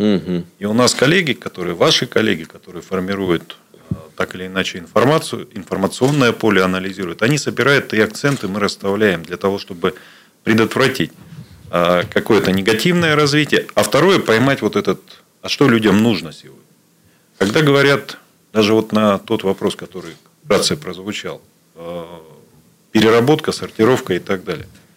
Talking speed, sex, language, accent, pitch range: 135 wpm, male, Russian, native, 95-120 Hz